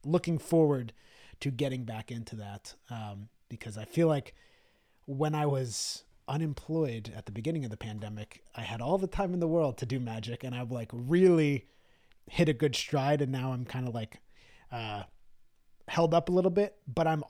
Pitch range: 130-160 Hz